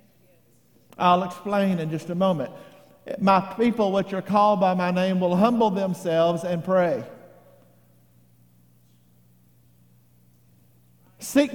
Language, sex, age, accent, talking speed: English, male, 50-69, American, 105 wpm